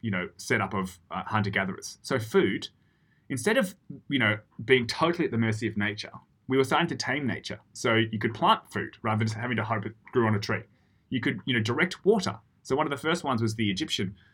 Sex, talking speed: male, 240 wpm